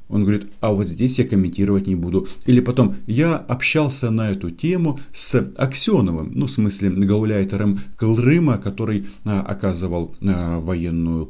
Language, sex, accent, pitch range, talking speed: Russian, male, native, 85-105 Hz, 140 wpm